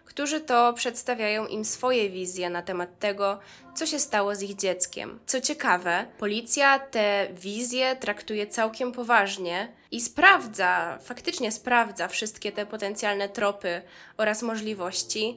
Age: 10-29